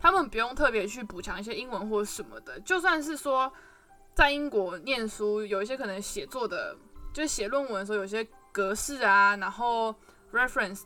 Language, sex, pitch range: Chinese, female, 200-270 Hz